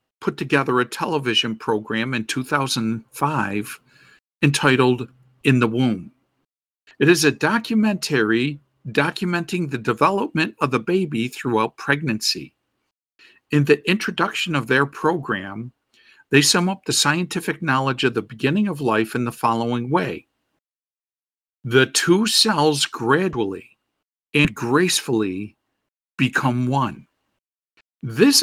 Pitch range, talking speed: 125-180 Hz, 110 wpm